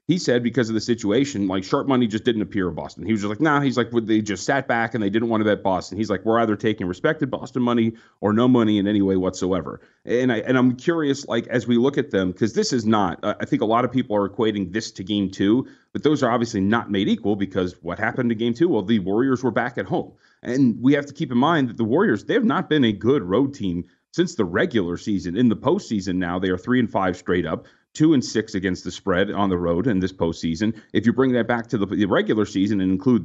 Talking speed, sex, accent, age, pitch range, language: 275 wpm, male, American, 30-49, 100-125 Hz, English